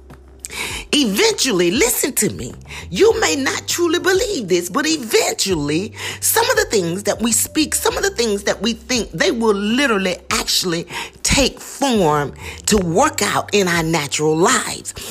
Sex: female